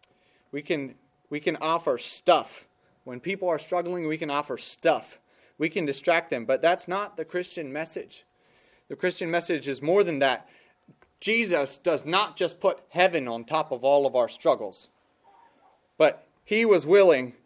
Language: English